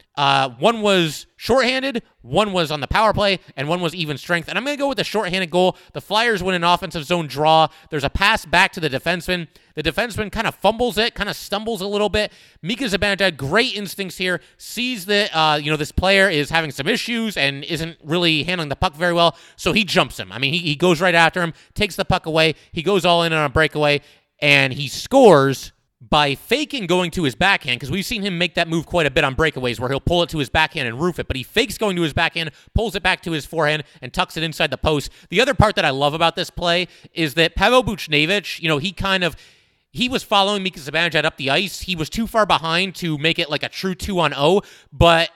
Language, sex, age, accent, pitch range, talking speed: English, male, 30-49, American, 150-195 Hz, 250 wpm